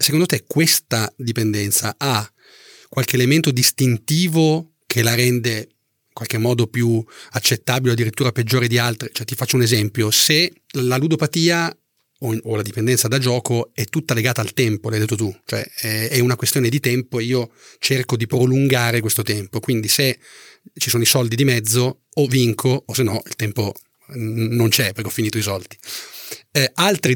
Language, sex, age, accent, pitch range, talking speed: Italian, male, 30-49, native, 110-130 Hz, 180 wpm